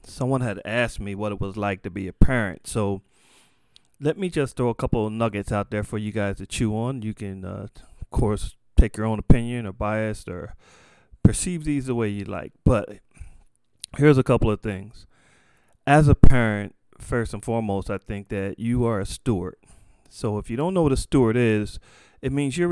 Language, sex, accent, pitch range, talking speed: English, male, American, 105-125 Hz, 205 wpm